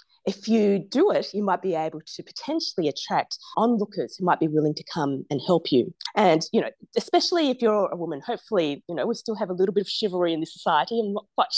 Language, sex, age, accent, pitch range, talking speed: English, female, 30-49, Australian, 180-240 Hz, 240 wpm